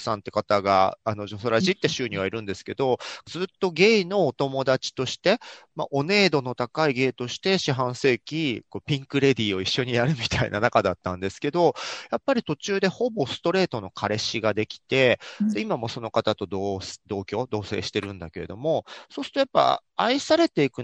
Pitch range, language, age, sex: 105-175 Hz, Japanese, 40-59, male